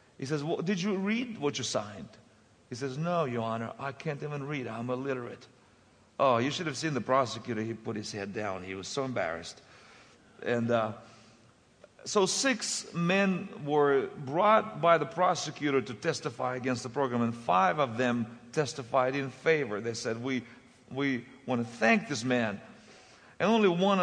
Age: 50-69